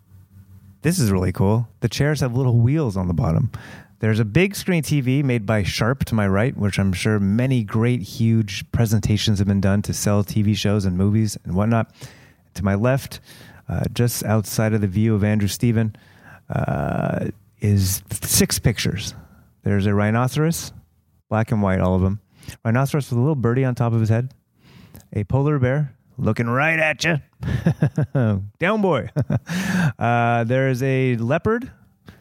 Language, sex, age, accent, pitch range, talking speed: English, male, 30-49, American, 105-135 Hz, 165 wpm